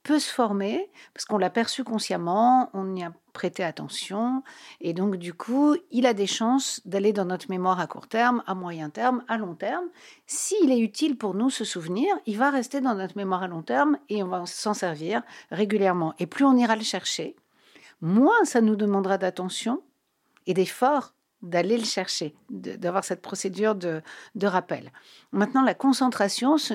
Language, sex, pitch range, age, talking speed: French, female, 185-245 Hz, 60-79, 180 wpm